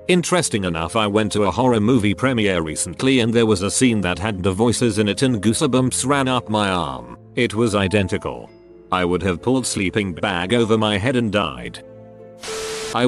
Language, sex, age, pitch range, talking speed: English, male, 40-59, 100-130 Hz, 195 wpm